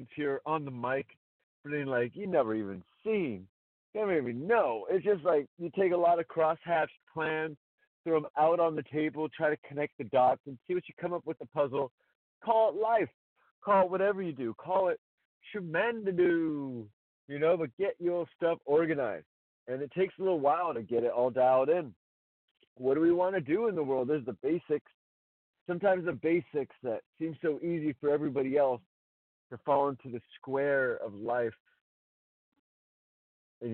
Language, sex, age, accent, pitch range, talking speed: English, male, 40-59, American, 120-160 Hz, 185 wpm